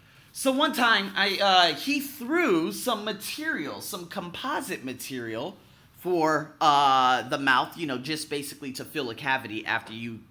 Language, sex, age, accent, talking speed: English, male, 30-49, American, 150 wpm